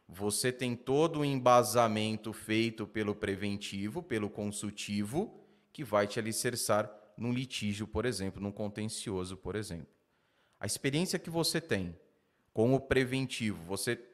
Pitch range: 105-130 Hz